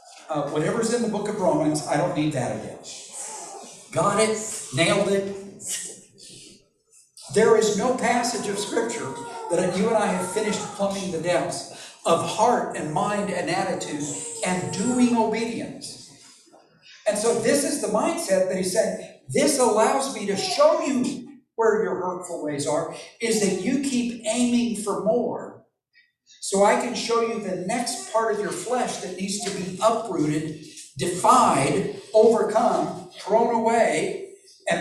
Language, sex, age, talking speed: English, male, 60-79, 150 wpm